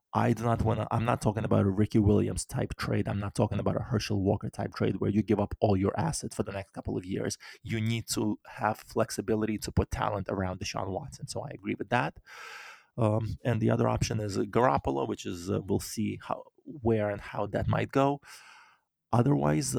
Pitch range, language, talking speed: 105-125 Hz, English, 220 wpm